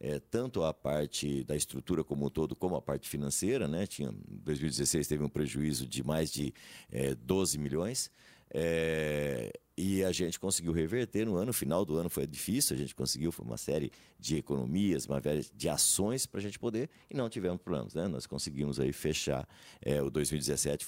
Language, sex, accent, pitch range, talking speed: Portuguese, male, Brazilian, 75-100 Hz, 190 wpm